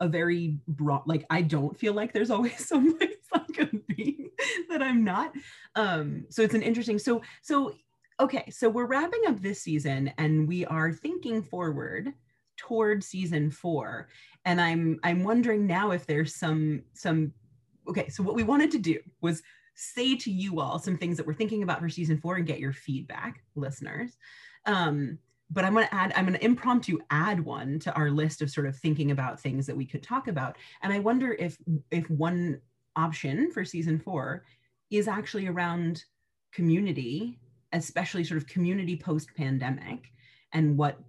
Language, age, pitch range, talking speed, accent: English, 30-49, 145-210 Hz, 180 wpm, American